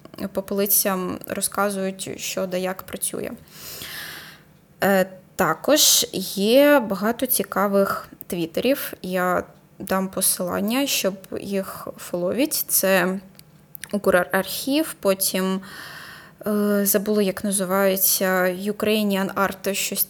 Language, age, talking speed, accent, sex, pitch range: Ukrainian, 10-29, 85 wpm, native, female, 185-210 Hz